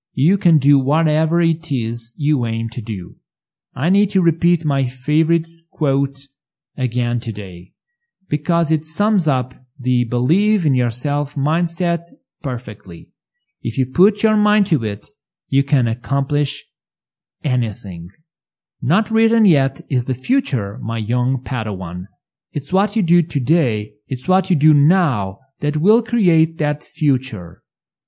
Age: 30-49